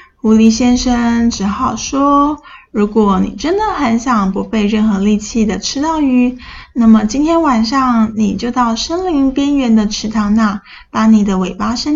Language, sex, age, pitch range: Chinese, female, 10-29, 215-270 Hz